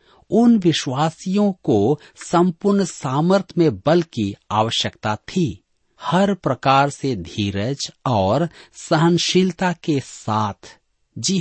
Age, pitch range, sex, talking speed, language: 50-69, 110-170 Hz, male, 100 wpm, Hindi